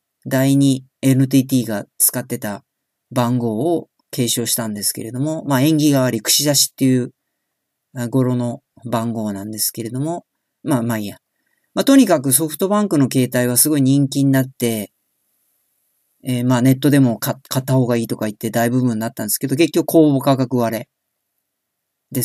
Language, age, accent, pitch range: Japanese, 40-59, native, 120-150 Hz